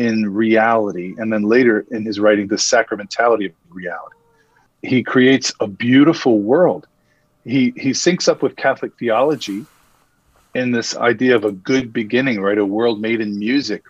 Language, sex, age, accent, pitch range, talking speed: English, male, 40-59, American, 105-130 Hz, 160 wpm